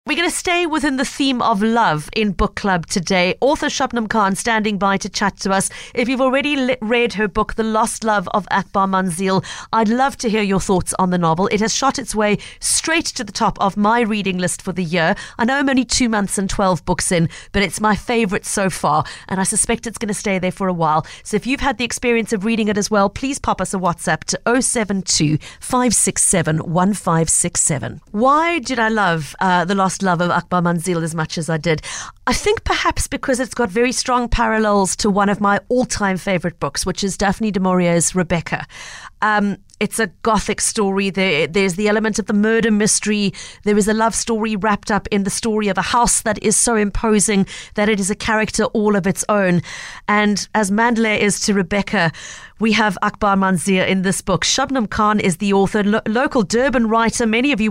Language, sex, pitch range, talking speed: English, female, 190-230 Hz, 215 wpm